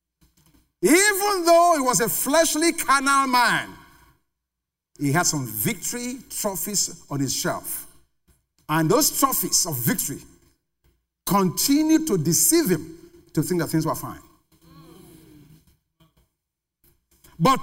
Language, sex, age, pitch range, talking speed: English, male, 50-69, 140-225 Hz, 110 wpm